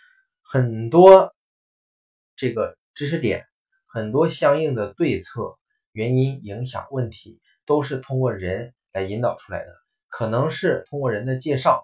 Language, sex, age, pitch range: Chinese, male, 20-39, 110-145 Hz